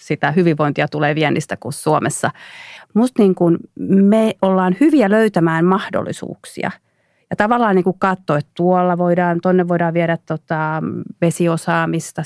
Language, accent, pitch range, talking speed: Finnish, native, 160-195 Hz, 120 wpm